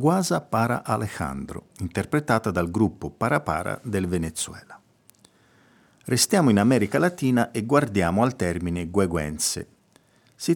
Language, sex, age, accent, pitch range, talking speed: Italian, male, 50-69, native, 95-130 Hz, 110 wpm